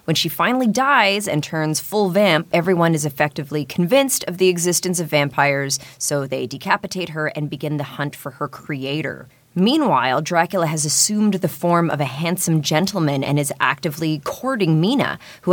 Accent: American